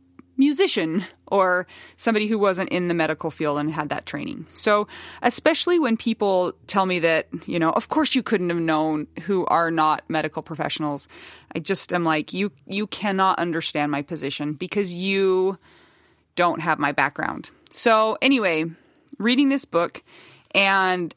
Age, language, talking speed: 30-49, English, 155 wpm